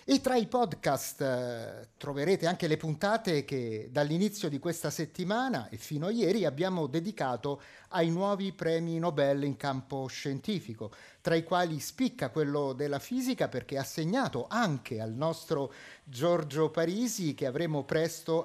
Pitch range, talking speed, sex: 140-200 Hz, 145 wpm, male